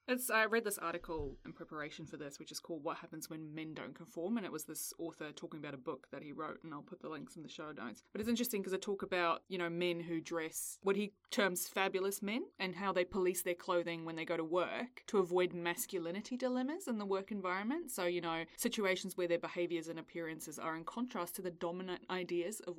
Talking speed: 240 wpm